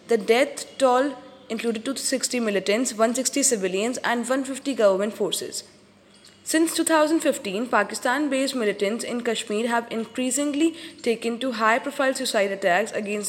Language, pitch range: English, 210-265 Hz